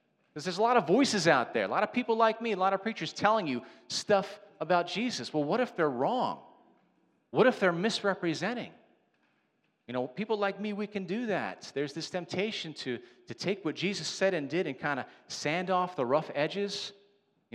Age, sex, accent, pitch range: 40-59, male, American, 120-200 Hz